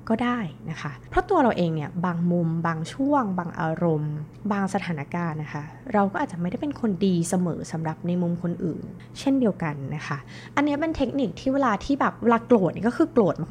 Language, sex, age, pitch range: Thai, female, 20-39, 165-225 Hz